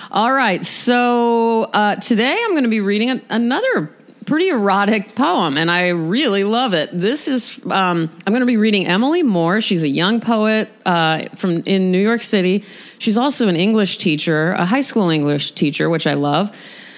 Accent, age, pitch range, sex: American, 30-49, 170-220 Hz, female